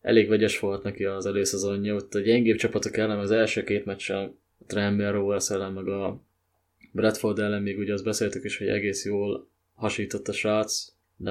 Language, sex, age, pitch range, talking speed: Hungarian, male, 20-39, 100-110 Hz, 175 wpm